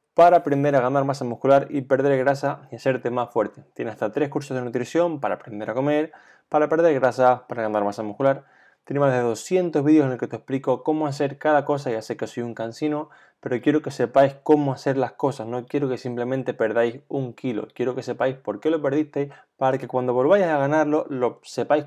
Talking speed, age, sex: 220 wpm, 20-39, male